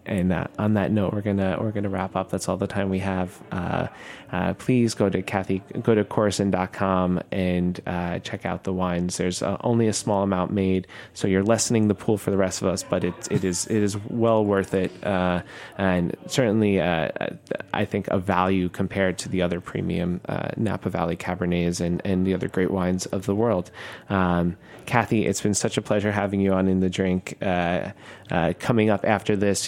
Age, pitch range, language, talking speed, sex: 20-39, 95-110 Hz, English, 210 wpm, male